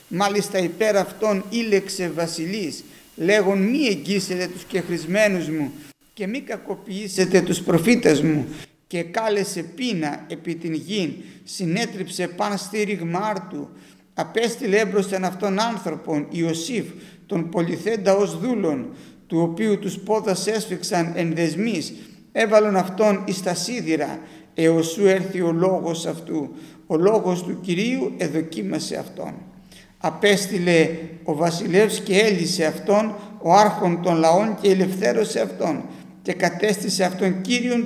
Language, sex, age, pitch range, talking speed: Greek, male, 50-69, 165-205 Hz, 120 wpm